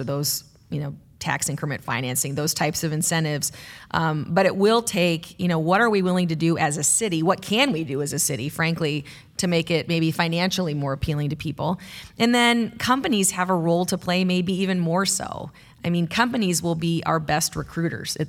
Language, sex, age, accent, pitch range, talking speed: English, female, 30-49, American, 150-180 Hz, 210 wpm